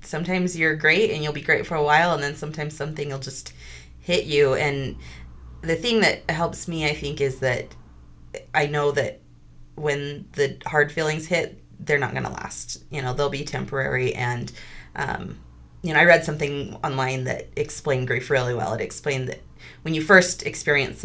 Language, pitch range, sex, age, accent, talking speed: English, 120-155 Hz, female, 30-49, American, 185 wpm